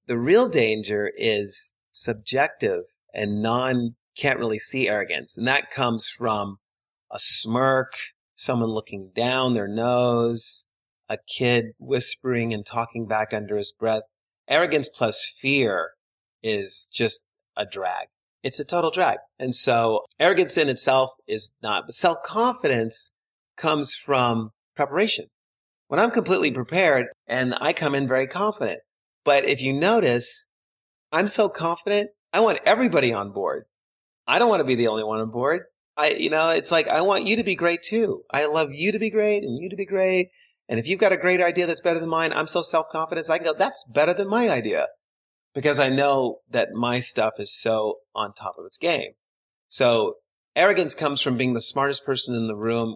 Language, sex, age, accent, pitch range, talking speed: English, male, 30-49, American, 115-175 Hz, 170 wpm